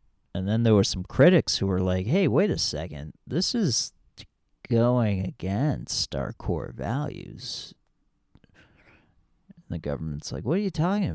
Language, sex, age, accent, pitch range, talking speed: English, male, 40-59, American, 90-145 Hz, 150 wpm